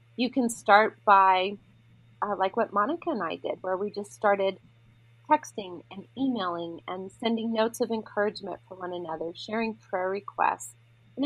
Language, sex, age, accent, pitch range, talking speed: English, female, 30-49, American, 185-230 Hz, 160 wpm